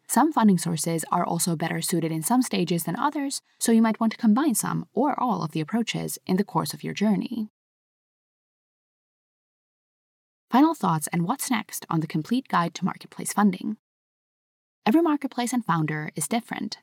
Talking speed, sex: 170 wpm, female